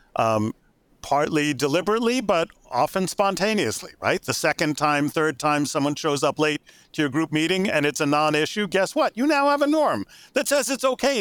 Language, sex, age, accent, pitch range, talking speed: English, male, 40-59, American, 105-165 Hz, 185 wpm